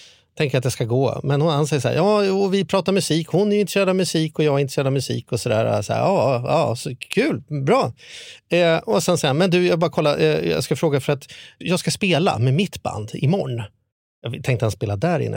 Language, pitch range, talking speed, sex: Swedish, 130-185 Hz, 245 wpm, male